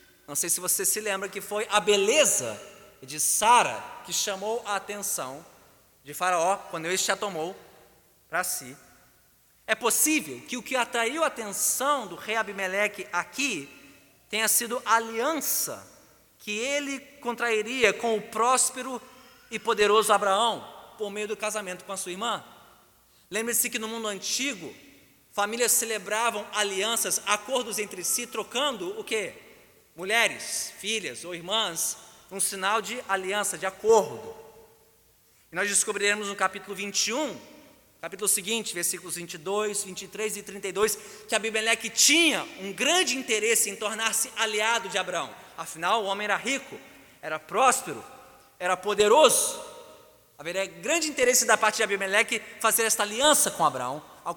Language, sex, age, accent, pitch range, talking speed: Portuguese, male, 20-39, Brazilian, 195-235 Hz, 140 wpm